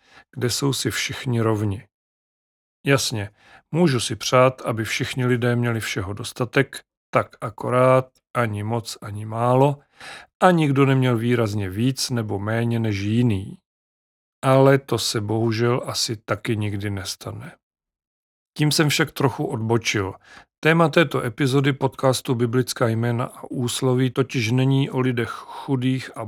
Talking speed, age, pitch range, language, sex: 130 wpm, 40-59, 110-135 Hz, Czech, male